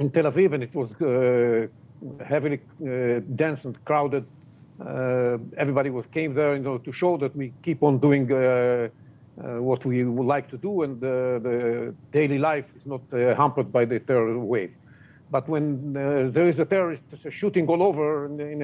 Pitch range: 135-195 Hz